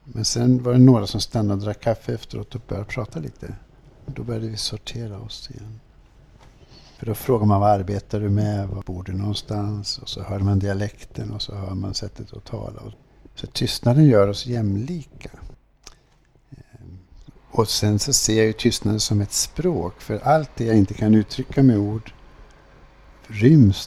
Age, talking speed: 60-79, 175 wpm